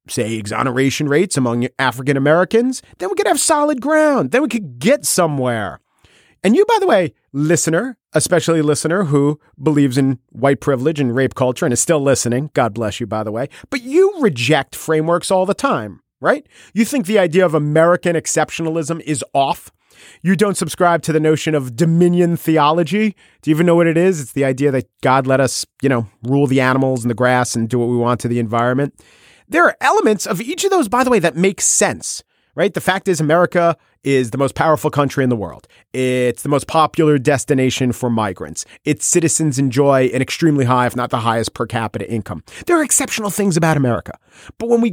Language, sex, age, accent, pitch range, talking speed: English, male, 40-59, American, 130-190 Hz, 205 wpm